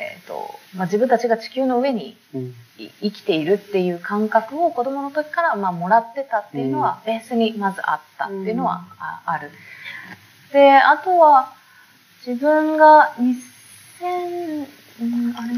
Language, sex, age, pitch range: Japanese, female, 20-39, 165-245 Hz